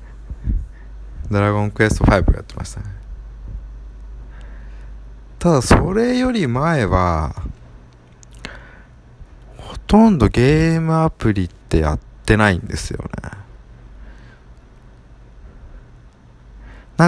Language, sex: Japanese, male